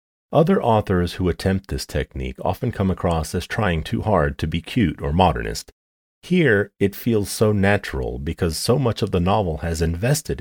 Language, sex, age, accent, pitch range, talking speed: English, male, 40-59, American, 75-105 Hz, 180 wpm